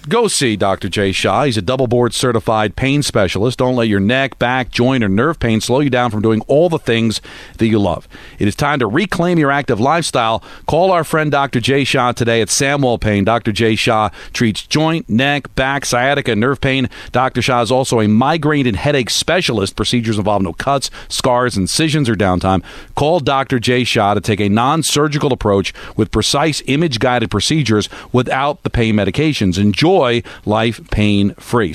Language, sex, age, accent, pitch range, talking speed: English, male, 40-59, American, 110-140 Hz, 185 wpm